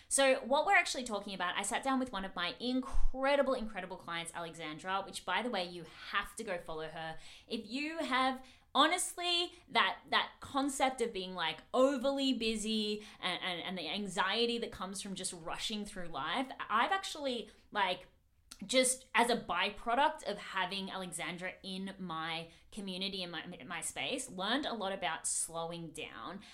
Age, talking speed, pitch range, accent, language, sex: 20-39, 170 wpm, 170-245 Hz, Australian, English, female